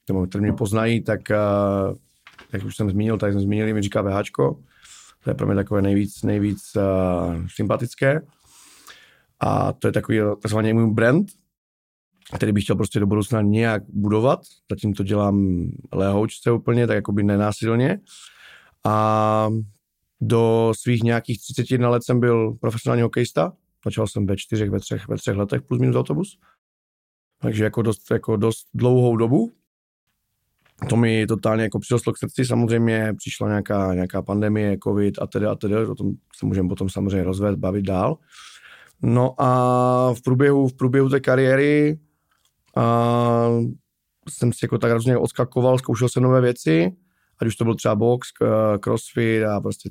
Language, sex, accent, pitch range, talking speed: Czech, male, native, 100-125 Hz, 155 wpm